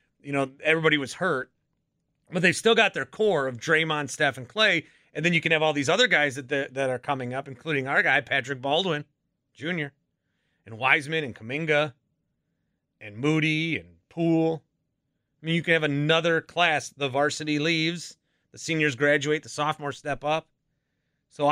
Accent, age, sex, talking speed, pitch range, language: American, 30-49, male, 175 wpm, 120-160 Hz, English